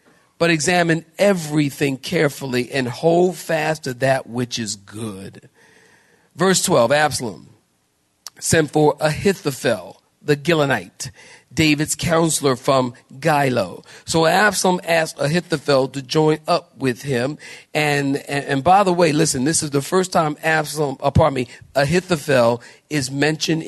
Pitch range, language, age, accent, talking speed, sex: 145-225 Hz, English, 40-59, American, 130 wpm, male